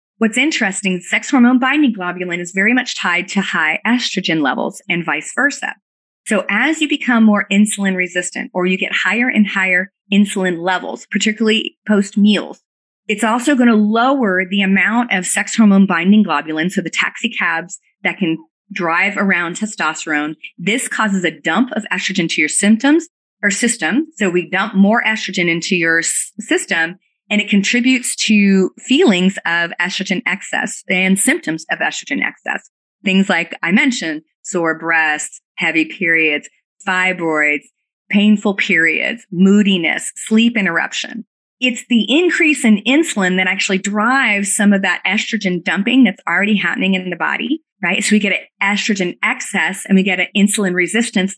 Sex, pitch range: female, 185-230 Hz